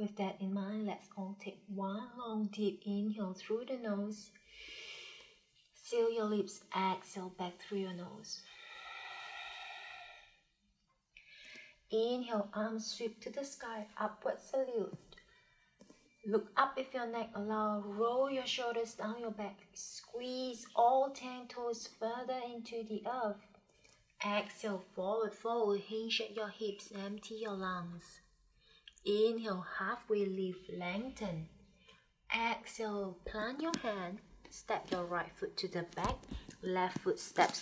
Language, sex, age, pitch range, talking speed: English, female, 30-49, 195-240 Hz, 125 wpm